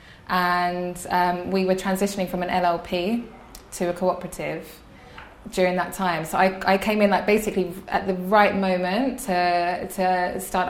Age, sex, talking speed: 20-39, female, 155 wpm